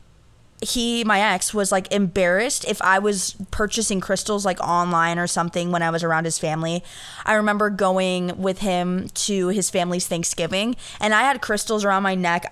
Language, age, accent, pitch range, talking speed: English, 20-39, American, 175-220 Hz, 175 wpm